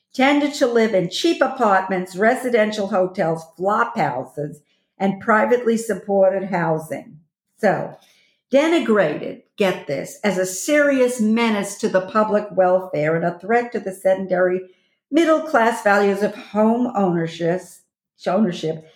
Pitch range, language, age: 180-220 Hz, English, 50-69